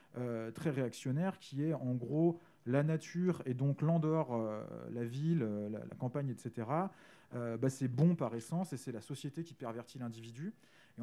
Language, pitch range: French, 120-160 Hz